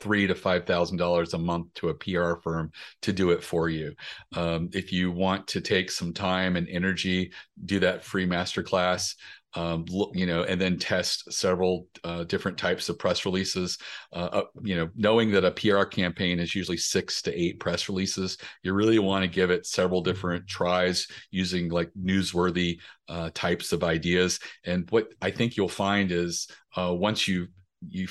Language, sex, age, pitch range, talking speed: English, male, 40-59, 85-95 Hz, 185 wpm